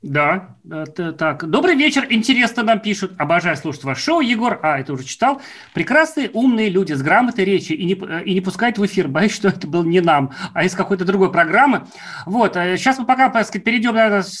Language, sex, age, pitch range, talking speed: Russian, male, 30-49, 185-235 Hz, 200 wpm